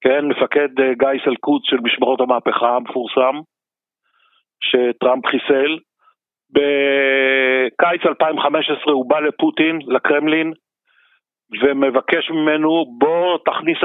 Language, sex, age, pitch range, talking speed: Hebrew, male, 50-69, 135-175 Hz, 85 wpm